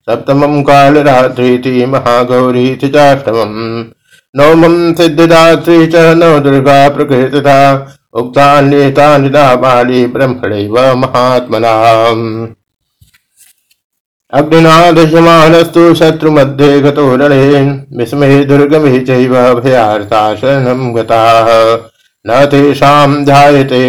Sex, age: male, 60-79